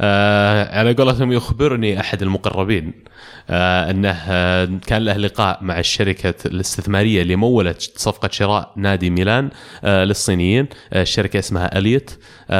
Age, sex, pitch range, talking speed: 20-39, male, 90-115 Hz, 105 wpm